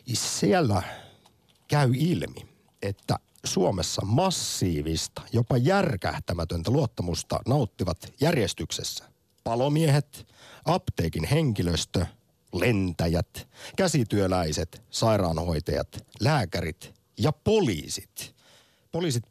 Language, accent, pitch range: Finnish, native, 90-130 Hz